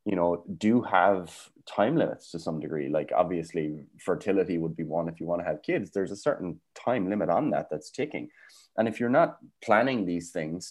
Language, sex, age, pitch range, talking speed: English, male, 20-39, 85-110 Hz, 205 wpm